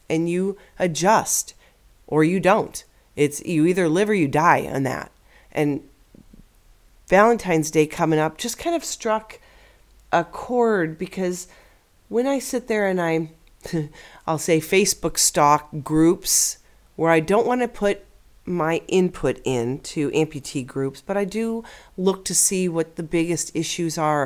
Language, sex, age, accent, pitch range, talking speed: English, female, 40-59, American, 150-185 Hz, 145 wpm